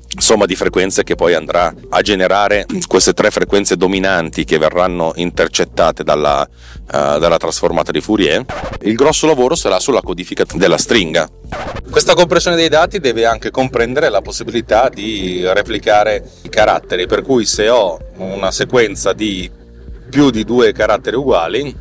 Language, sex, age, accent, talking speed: Italian, male, 30-49, native, 145 wpm